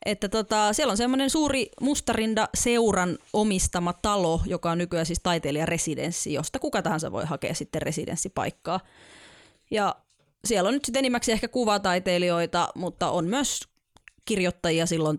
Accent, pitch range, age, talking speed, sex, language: native, 165-205 Hz, 20-39, 140 wpm, female, Finnish